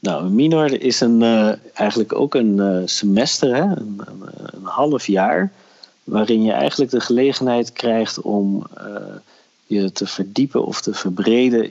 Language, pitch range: Dutch, 95-110 Hz